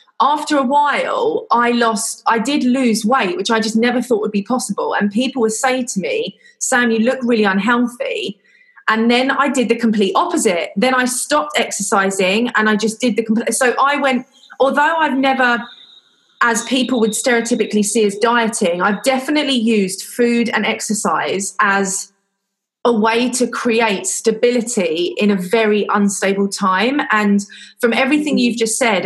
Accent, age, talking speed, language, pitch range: British, 30-49, 165 wpm, English, 200-250 Hz